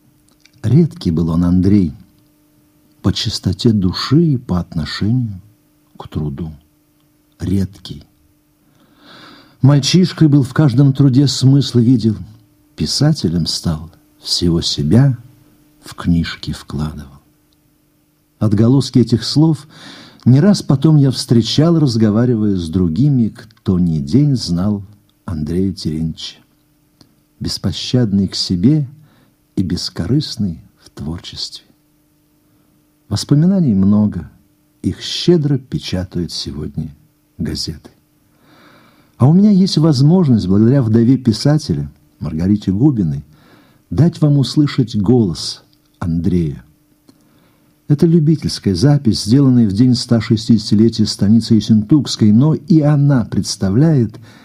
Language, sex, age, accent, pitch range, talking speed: Russian, male, 60-79, native, 95-150 Hz, 95 wpm